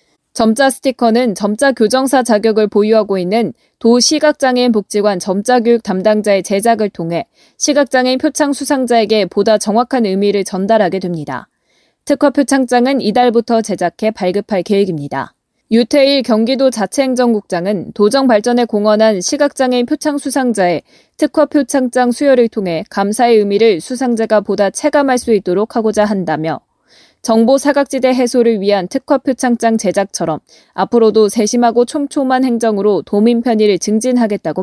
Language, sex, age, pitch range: Korean, female, 20-39, 200-255 Hz